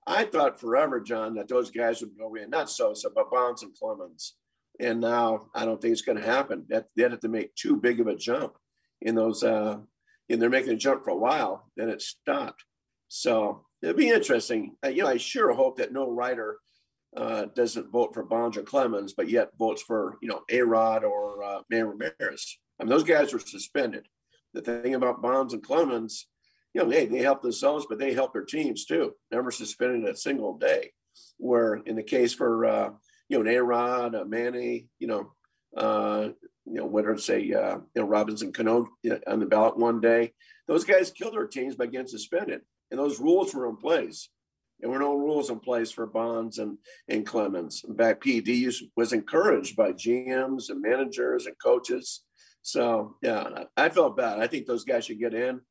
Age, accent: 50-69, American